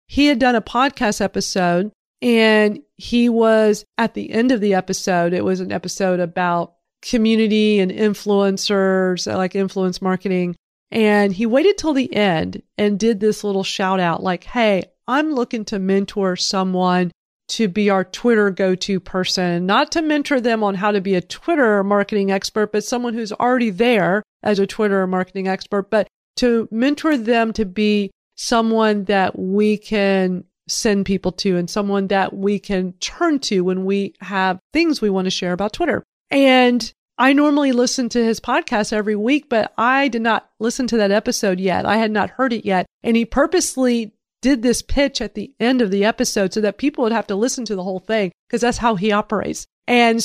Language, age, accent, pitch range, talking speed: English, 40-59, American, 195-240 Hz, 185 wpm